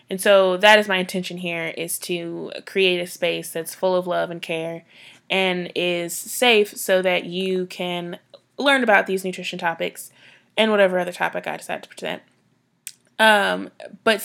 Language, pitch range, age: English, 180-205 Hz, 20-39